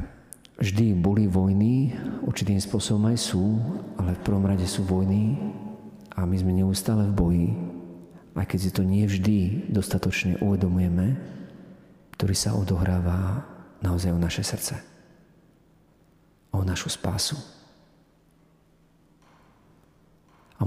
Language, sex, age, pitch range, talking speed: Slovak, male, 40-59, 90-105 Hz, 105 wpm